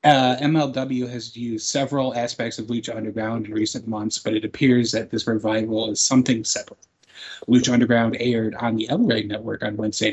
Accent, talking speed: American, 180 wpm